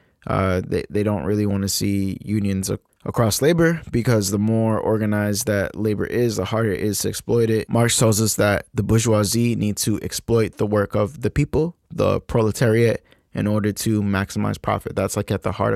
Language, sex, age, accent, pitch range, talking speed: English, male, 20-39, American, 100-110 Hz, 195 wpm